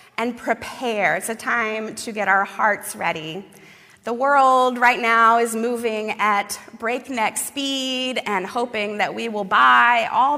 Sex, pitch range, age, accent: female, 205-255 Hz, 30-49, American